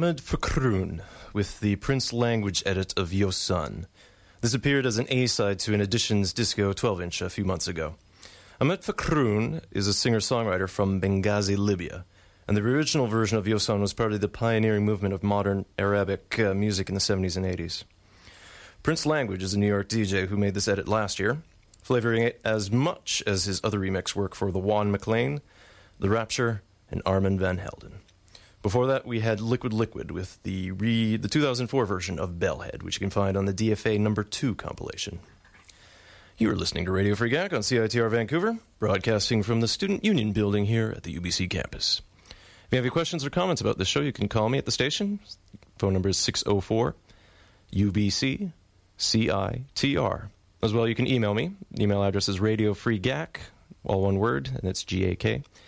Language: English